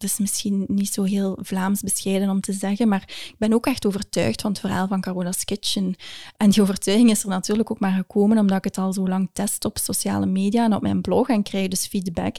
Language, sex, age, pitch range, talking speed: Dutch, female, 20-39, 195-230 Hz, 245 wpm